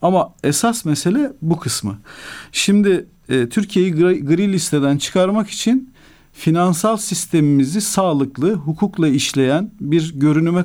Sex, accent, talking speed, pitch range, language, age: male, native, 105 wpm, 140-185 Hz, Turkish, 50-69